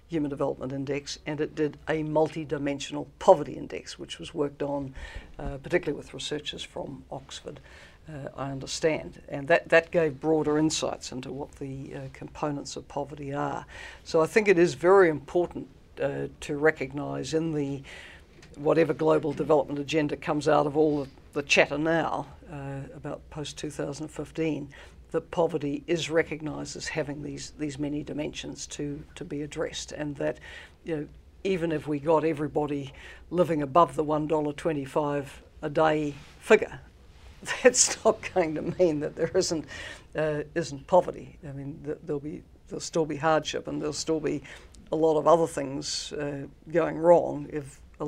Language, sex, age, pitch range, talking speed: English, female, 60-79, 145-160 Hz, 160 wpm